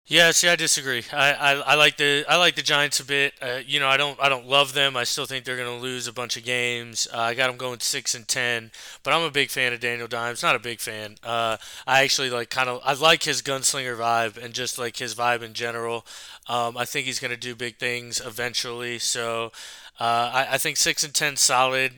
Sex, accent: male, American